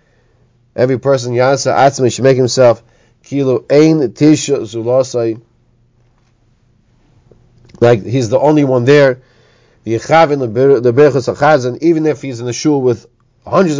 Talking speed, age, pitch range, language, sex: 135 wpm, 30-49, 120-140 Hz, English, male